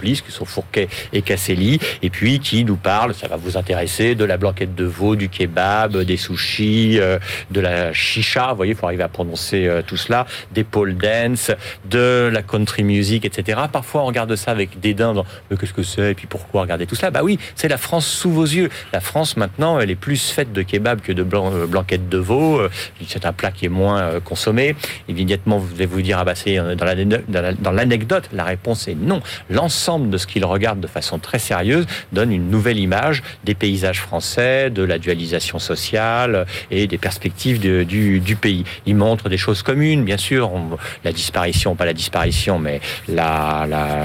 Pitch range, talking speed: 90-110 Hz, 205 wpm